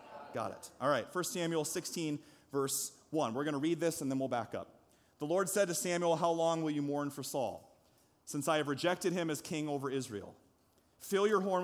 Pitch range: 145-185 Hz